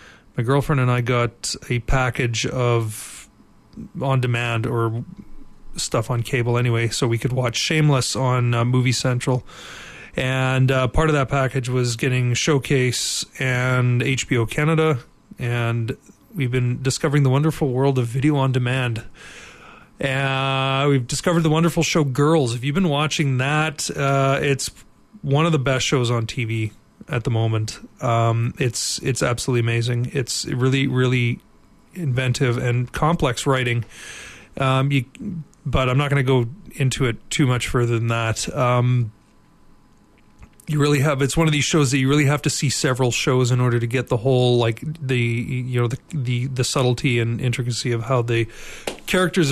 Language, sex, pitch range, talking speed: English, male, 120-140 Hz, 165 wpm